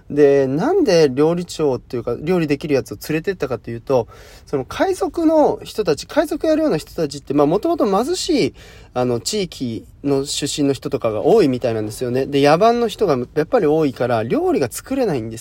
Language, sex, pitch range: Japanese, male, 125-200 Hz